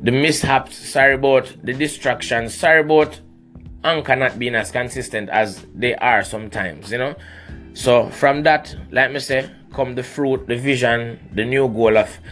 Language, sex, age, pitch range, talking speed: English, male, 20-39, 110-145 Hz, 165 wpm